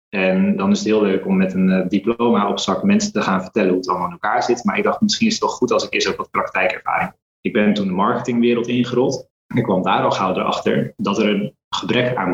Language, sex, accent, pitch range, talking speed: Dutch, male, Dutch, 100-130 Hz, 260 wpm